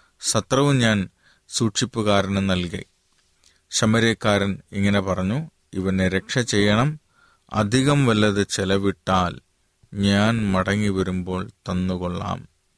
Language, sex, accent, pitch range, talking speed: Malayalam, male, native, 95-115 Hz, 80 wpm